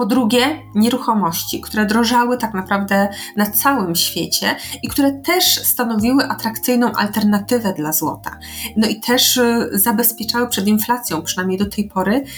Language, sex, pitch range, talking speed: Polish, female, 200-245 Hz, 135 wpm